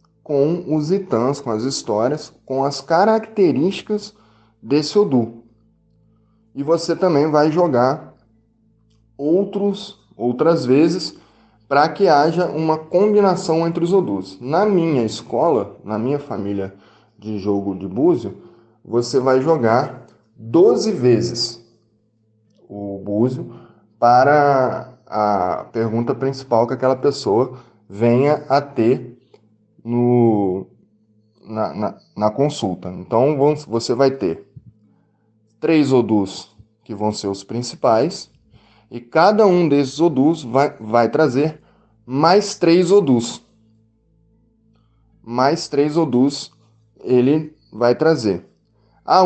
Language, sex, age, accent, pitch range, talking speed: English, male, 10-29, Brazilian, 110-150 Hz, 105 wpm